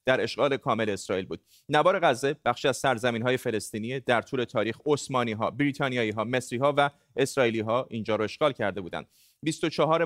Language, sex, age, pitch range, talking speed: Persian, male, 30-49, 120-150 Hz, 160 wpm